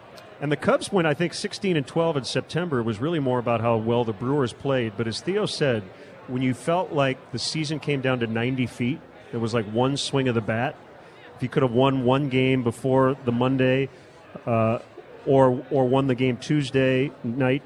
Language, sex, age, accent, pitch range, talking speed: English, male, 40-59, American, 125-155 Hz, 210 wpm